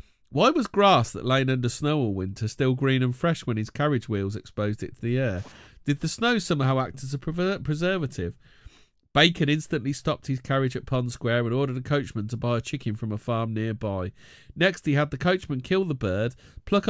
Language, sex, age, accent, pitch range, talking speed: English, male, 40-59, British, 115-145 Hz, 210 wpm